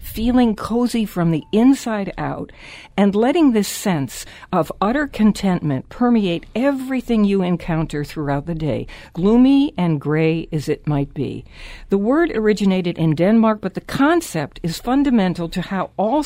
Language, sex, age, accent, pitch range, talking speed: English, female, 60-79, American, 160-215 Hz, 150 wpm